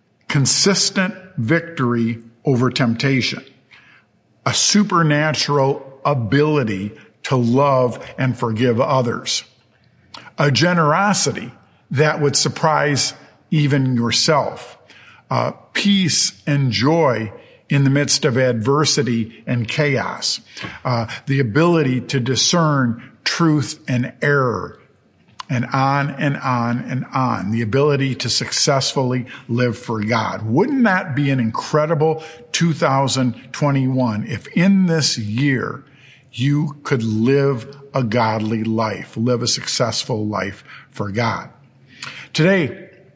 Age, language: 50-69, English